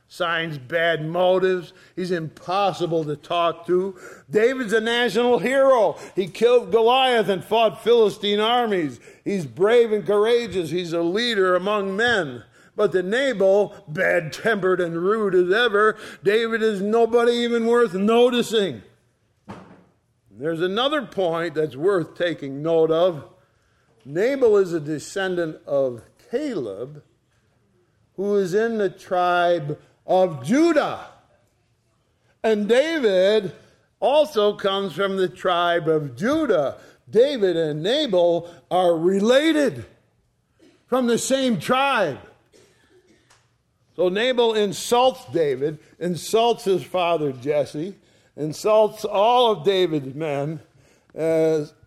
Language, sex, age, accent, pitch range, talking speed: English, male, 50-69, American, 160-225 Hz, 110 wpm